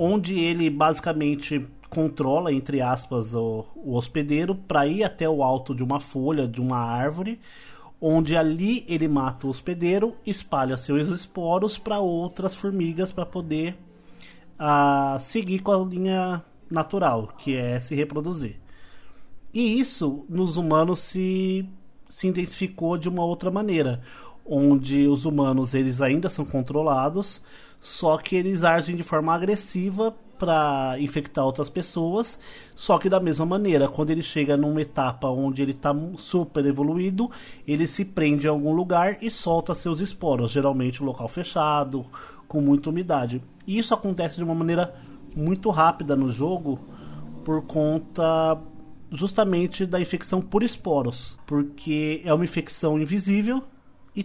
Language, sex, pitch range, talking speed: Portuguese, male, 140-185 Hz, 140 wpm